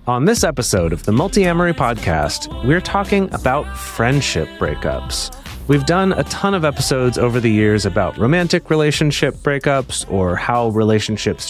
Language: English